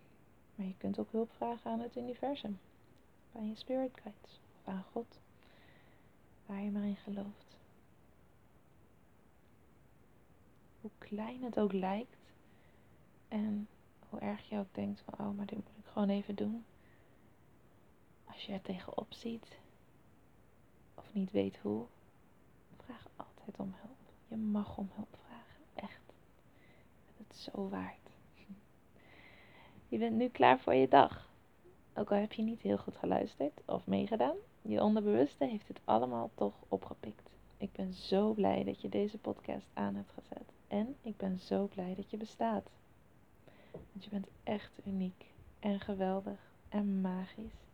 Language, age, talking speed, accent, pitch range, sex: Dutch, 30-49, 145 wpm, Dutch, 185-220 Hz, female